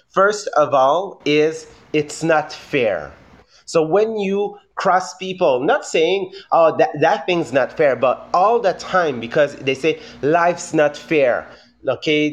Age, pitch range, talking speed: 30-49, 140-180 Hz, 150 wpm